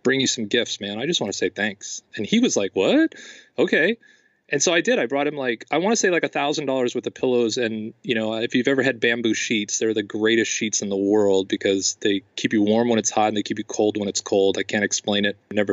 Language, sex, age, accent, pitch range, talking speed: English, male, 30-49, American, 110-155 Hz, 280 wpm